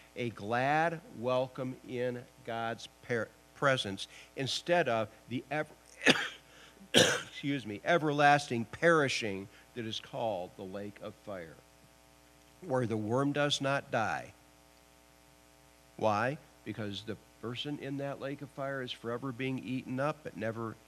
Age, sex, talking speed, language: 50-69, male, 125 wpm, English